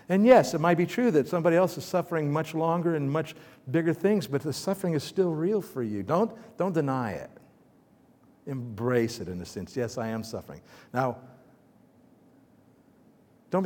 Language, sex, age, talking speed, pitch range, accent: English, male, 60-79, 175 wpm, 120-180 Hz, American